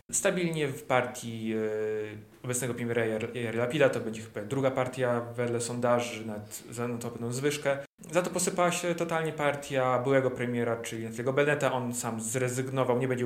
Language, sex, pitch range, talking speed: Polish, male, 115-140 Hz, 165 wpm